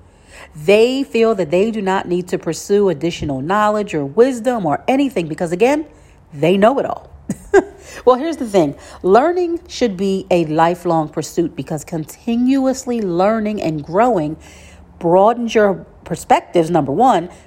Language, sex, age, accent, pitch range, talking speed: English, female, 40-59, American, 160-235 Hz, 140 wpm